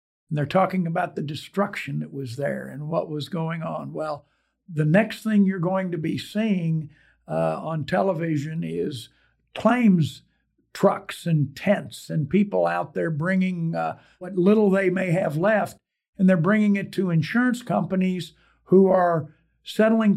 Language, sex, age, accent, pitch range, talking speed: English, male, 60-79, American, 165-195 Hz, 160 wpm